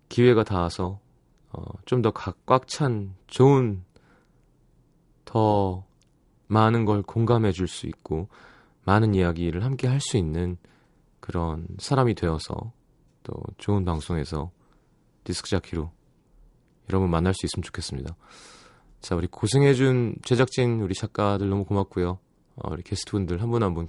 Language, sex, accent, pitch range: Korean, male, native, 90-125 Hz